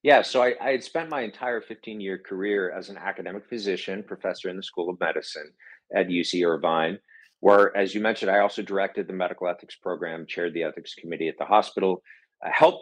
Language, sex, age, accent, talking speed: English, male, 50-69, American, 200 wpm